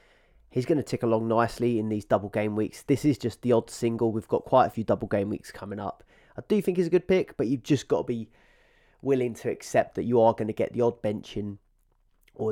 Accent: British